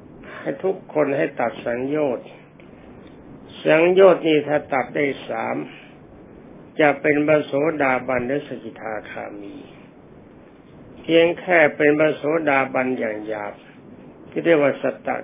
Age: 60-79